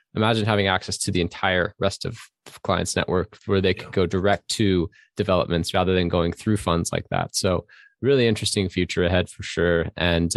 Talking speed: 185 wpm